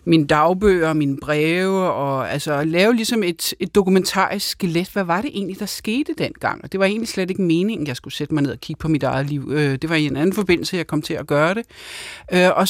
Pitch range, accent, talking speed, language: 160-210 Hz, native, 235 wpm, Danish